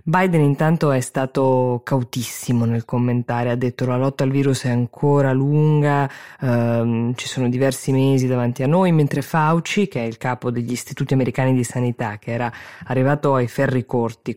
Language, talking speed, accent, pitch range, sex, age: Italian, 175 wpm, native, 125-155 Hz, female, 20-39